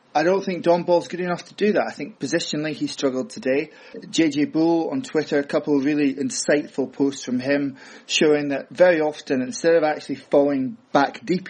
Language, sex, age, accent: English, male, 30-49, British